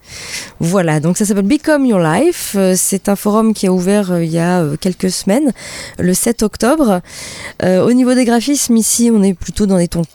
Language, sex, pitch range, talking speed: French, female, 170-225 Hz, 190 wpm